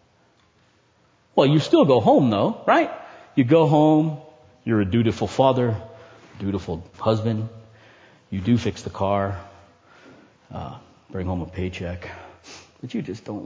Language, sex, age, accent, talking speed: English, male, 40-59, American, 135 wpm